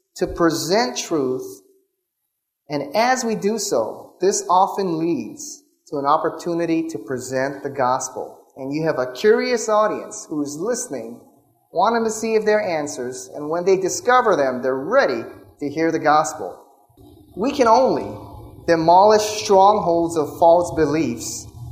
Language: English